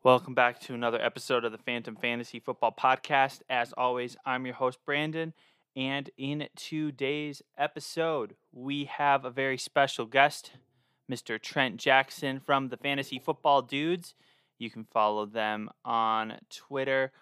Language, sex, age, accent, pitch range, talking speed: English, male, 20-39, American, 125-150 Hz, 145 wpm